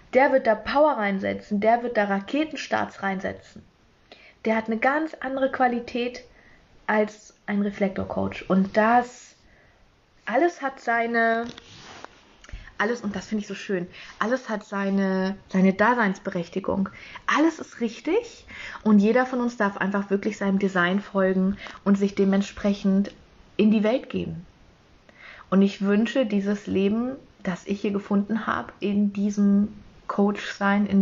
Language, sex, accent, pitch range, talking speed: German, female, German, 190-225 Hz, 135 wpm